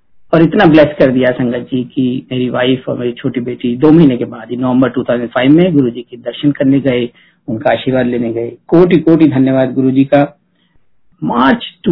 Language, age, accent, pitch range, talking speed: Hindi, 50-69, native, 135-200 Hz, 180 wpm